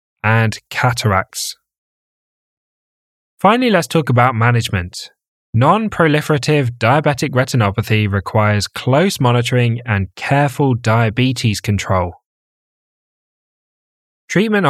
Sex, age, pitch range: male, 10-29, 110-135 Hz